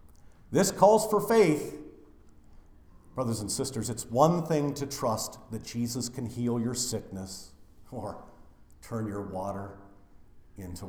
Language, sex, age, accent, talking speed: English, male, 50-69, American, 125 wpm